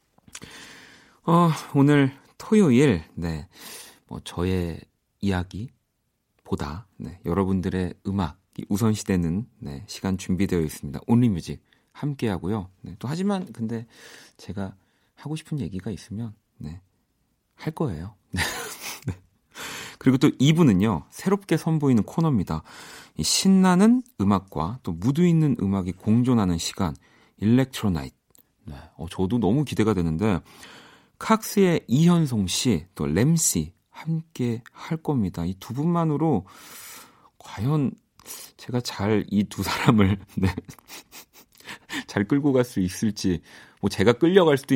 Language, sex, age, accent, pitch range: Korean, male, 40-59, native, 95-145 Hz